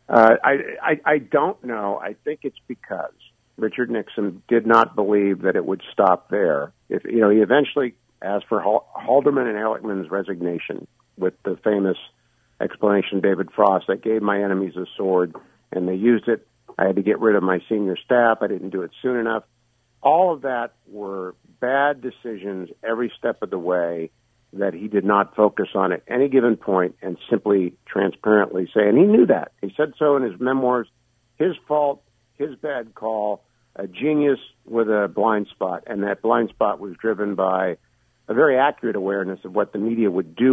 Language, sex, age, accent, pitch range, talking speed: English, male, 50-69, American, 95-120 Hz, 185 wpm